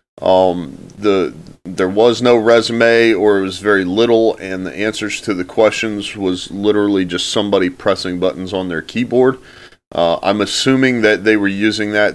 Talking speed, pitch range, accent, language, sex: 170 wpm, 95-115 Hz, American, English, male